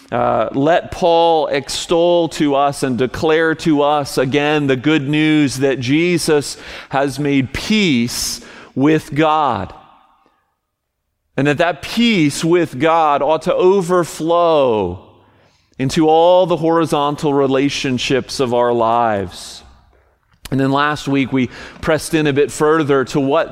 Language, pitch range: English, 130-160 Hz